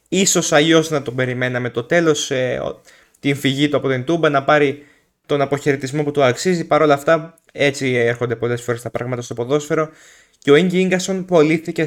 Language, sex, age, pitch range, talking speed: Greek, male, 20-39, 125-155 Hz, 175 wpm